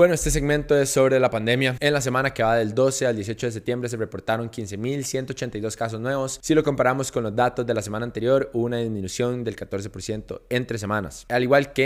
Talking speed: 220 wpm